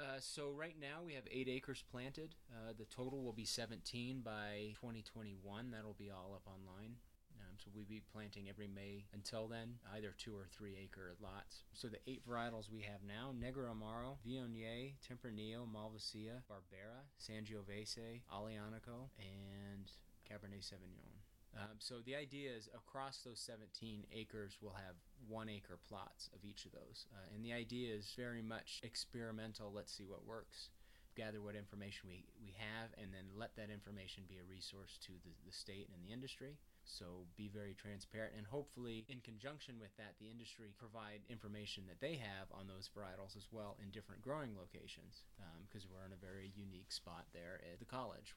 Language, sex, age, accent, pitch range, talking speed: English, male, 20-39, American, 100-120 Hz, 180 wpm